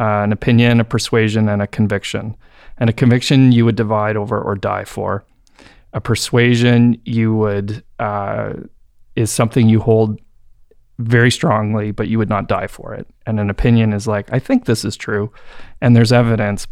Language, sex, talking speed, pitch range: English, male, 175 wpm, 110-125 Hz